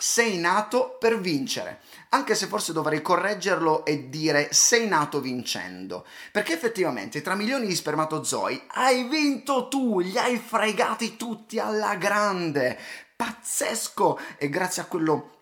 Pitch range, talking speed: 130-215 Hz, 130 wpm